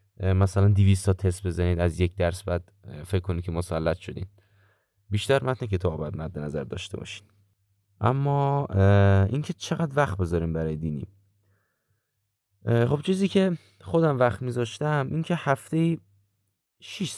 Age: 30-49